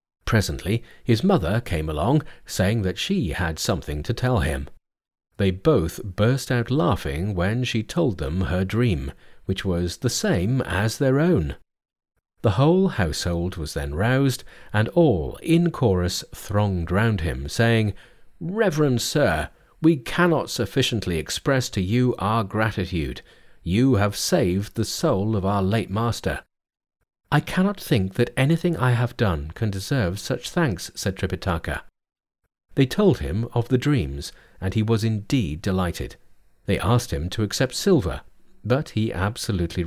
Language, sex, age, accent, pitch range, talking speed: English, male, 40-59, British, 95-130 Hz, 150 wpm